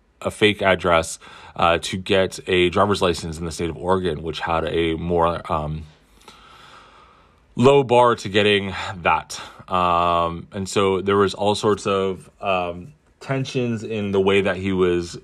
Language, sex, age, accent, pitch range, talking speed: English, male, 30-49, American, 90-110 Hz, 160 wpm